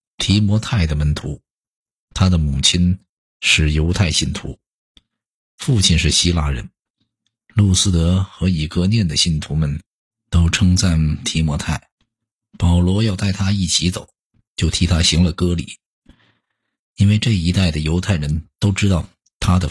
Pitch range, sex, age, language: 80-100 Hz, male, 50-69, Chinese